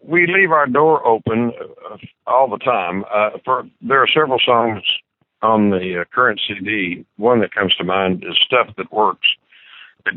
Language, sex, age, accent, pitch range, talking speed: English, male, 60-79, American, 100-120 Hz, 165 wpm